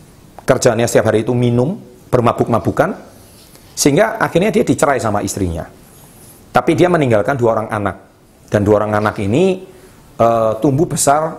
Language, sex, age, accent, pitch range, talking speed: Indonesian, male, 40-59, native, 105-140 Hz, 135 wpm